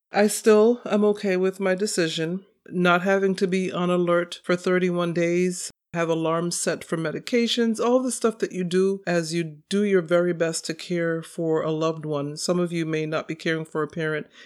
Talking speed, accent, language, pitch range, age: 205 wpm, American, English, 160-195 Hz, 40-59